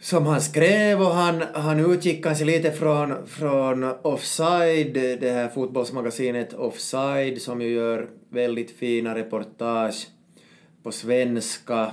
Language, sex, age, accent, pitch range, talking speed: Swedish, male, 20-39, Finnish, 110-125 Hz, 120 wpm